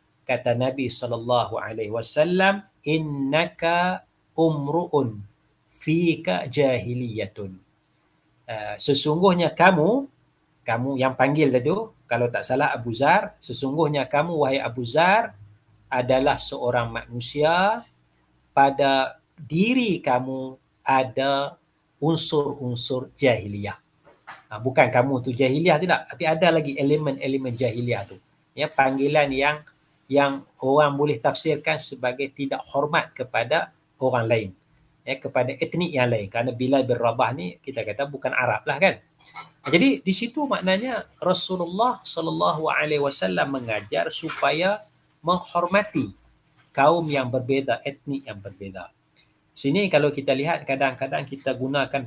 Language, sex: English, male